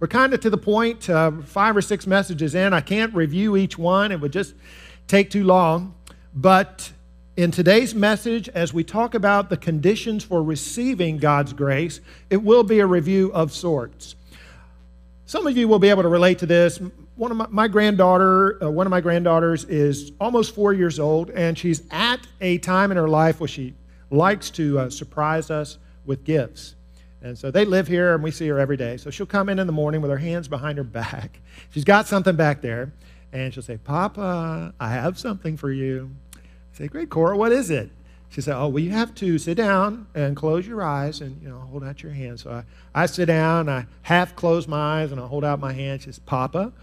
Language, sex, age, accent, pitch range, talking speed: English, male, 50-69, American, 140-190 Hz, 215 wpm